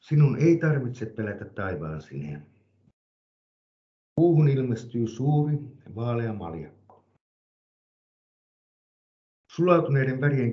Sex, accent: male, native